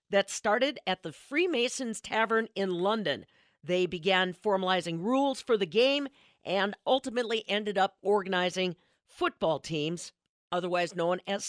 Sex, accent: female, American